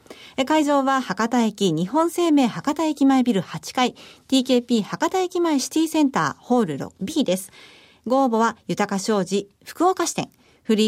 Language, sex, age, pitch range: Japanese, female, 40-59, 215-300 Hz